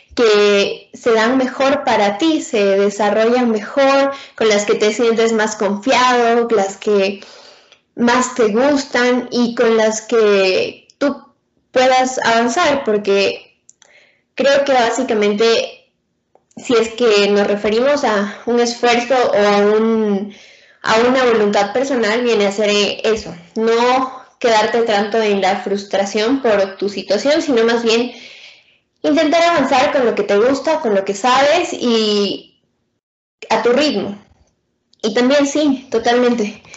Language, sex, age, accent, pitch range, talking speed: Spanish, female, 10-29, Mexican, 205-255 Hz, 135 wpm